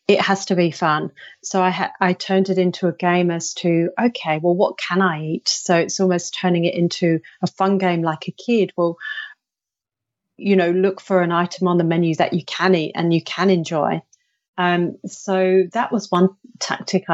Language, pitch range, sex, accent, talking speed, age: English, 175-205 Hz, female, British, 205 wpm, 30-49